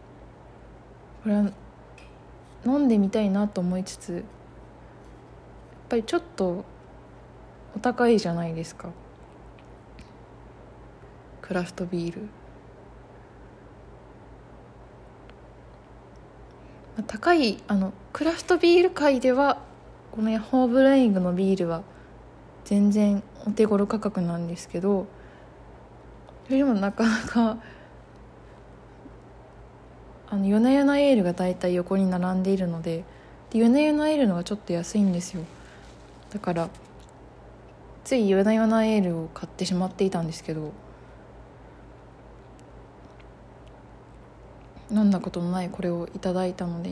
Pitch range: 175-225 Hz